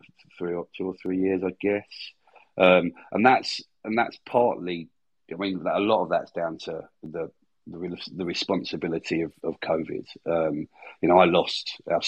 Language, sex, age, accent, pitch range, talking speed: English, male, 40-59, British, 85-95 Hz, 175 wpm